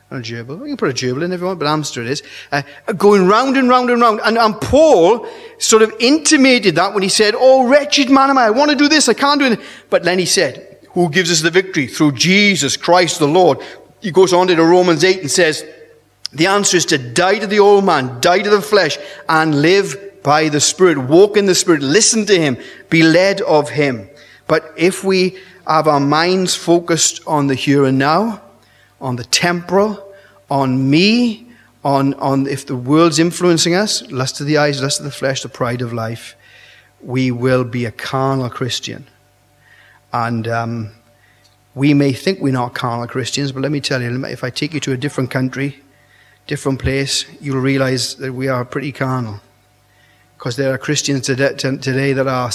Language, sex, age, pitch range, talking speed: English, male, 30-49, 135-185 Hz, 200 wpm